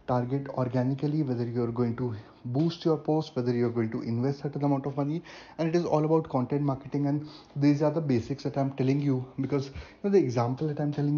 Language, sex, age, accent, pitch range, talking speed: English, male, 30-49, Indian, 120-155 Hz, 225 wpm